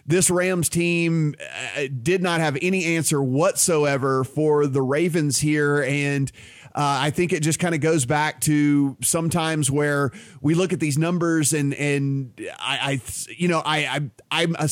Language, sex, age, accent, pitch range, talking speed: English, male, 30-49, American, 140-165 Hz, 165 wpm